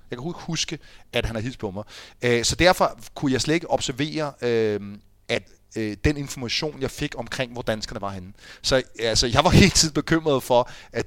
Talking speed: 190 wpm